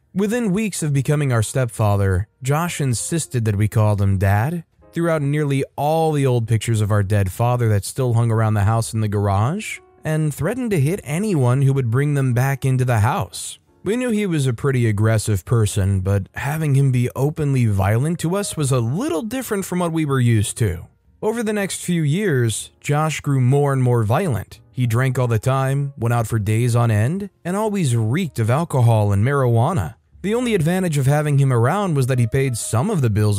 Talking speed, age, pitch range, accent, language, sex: 210 wpm, 20-39, 110-145 Hz, American, English, male